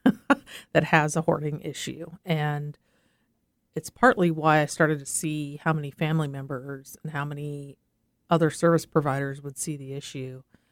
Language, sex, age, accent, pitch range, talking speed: English, female, 40-59, American, 135-160 Hz, 150 wpm